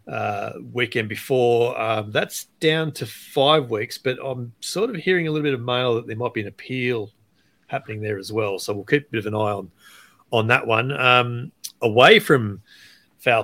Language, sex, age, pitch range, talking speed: English, male, 30-49, 105-130 Hz, 200 wpm